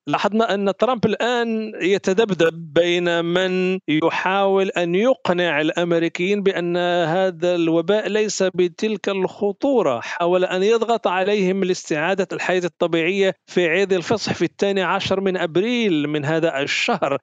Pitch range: 165-200 Hz